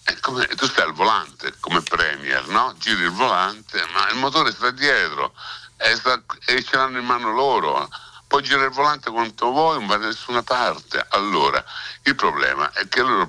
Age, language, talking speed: 60-79, Italian, 185 wpm